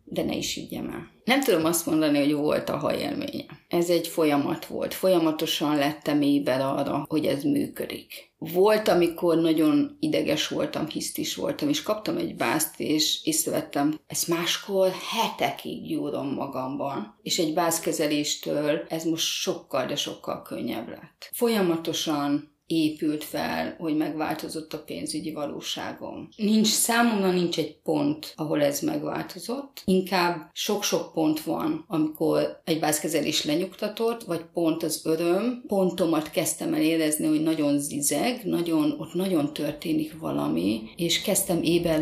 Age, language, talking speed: 30-49, Hungarian, 135 wpm